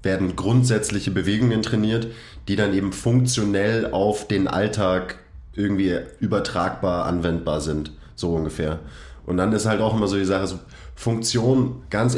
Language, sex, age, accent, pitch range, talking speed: German, male, 30-49, German, 80-115 Hz, 140 wpm